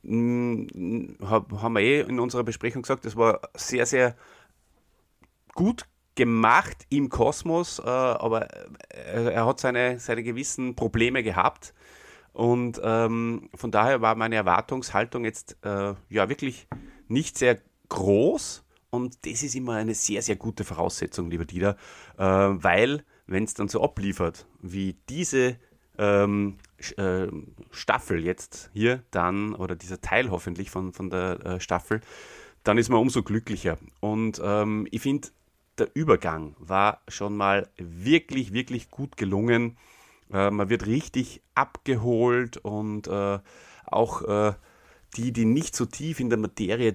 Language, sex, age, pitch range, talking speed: German, male, 30-49, 100-125 Hz, 135 wpm